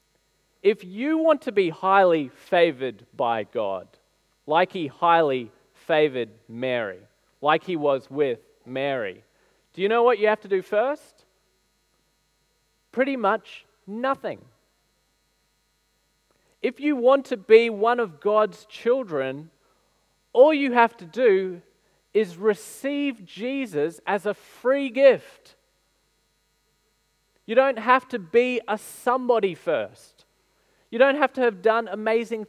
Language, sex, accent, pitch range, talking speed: English, male, Australian, 185-255 Hz, 125 wpm